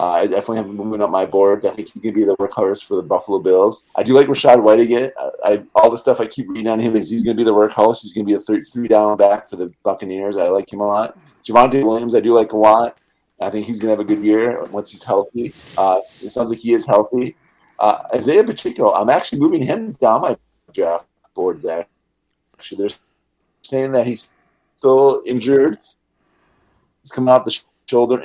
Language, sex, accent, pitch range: English, male, American, 100-120 Hz